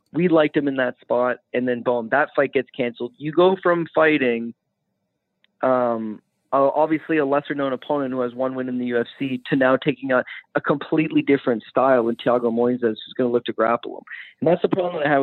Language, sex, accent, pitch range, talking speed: English, male, American, 130-180 Hz, 215 wpm